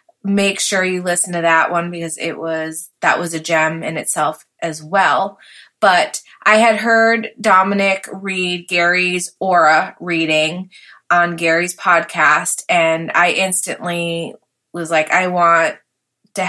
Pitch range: 165-195 Hz